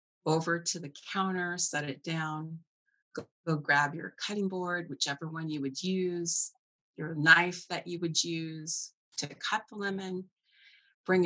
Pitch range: 150-180 Hz